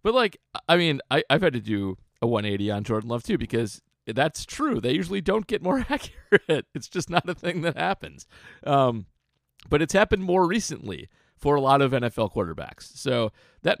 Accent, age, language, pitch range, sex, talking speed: American, 40-59, English, 105-150 Hz, male, 190 wpm